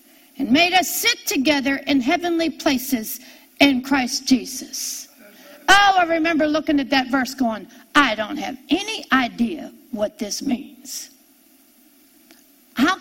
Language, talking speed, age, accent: English, 130 wpm, 60-79, American